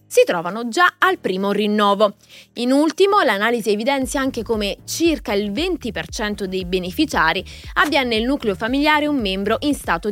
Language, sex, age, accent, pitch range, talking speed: Italian, female, 20-39, native, 210-330 Hz, 150 wpm